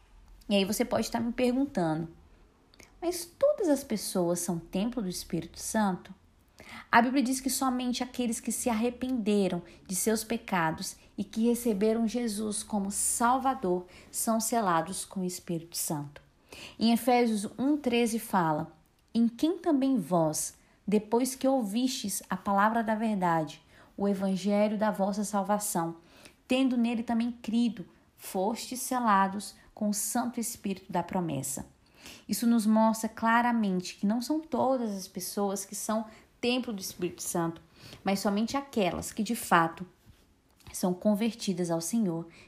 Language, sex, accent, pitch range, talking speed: Portuguese, female, Brazilian, 185-240 Hz, 140 wpm